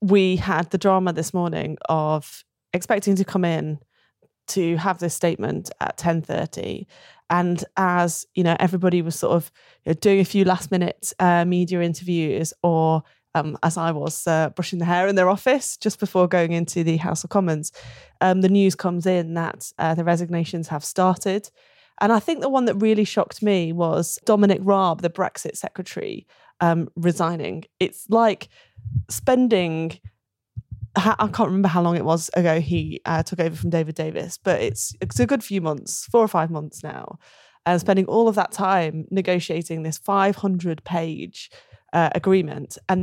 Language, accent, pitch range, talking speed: English, British, 165-190 Hz, 175 wpm